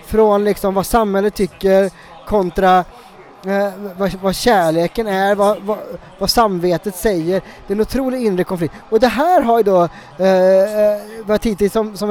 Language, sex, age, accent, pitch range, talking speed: English, male, 20-39, Norwegian, 180-230 Hz, 155 wpm